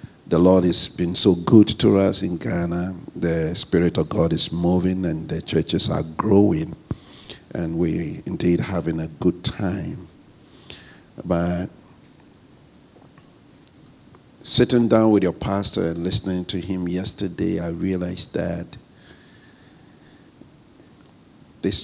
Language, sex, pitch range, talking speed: English, male, 90-110 Hz, 120 wpm